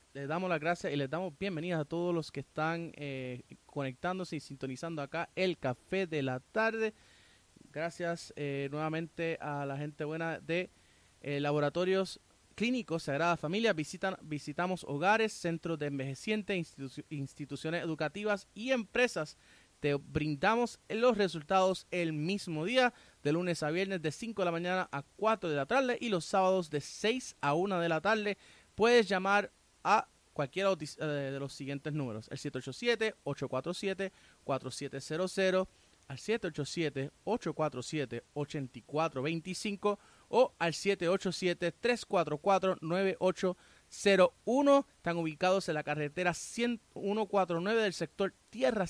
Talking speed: 125 wpm